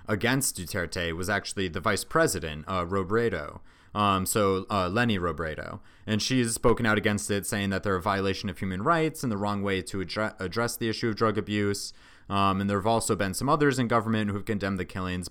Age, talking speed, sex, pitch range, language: 30-49, 210 wpm, male, 90-110 Hz, English